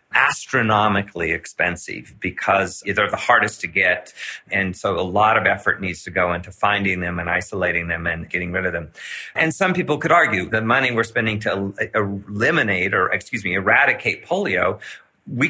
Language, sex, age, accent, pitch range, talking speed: English, male, 40-59, American, 100-125 Hz, 175 wpm